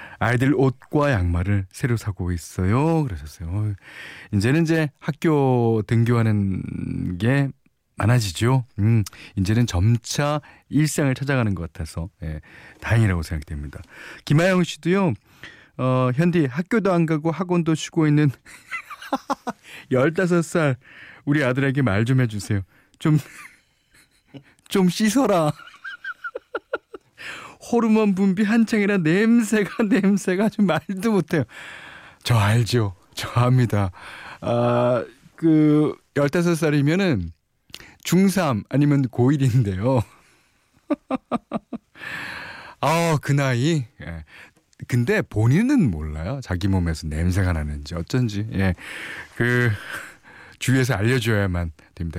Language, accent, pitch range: Korean, native, 105-170 Hz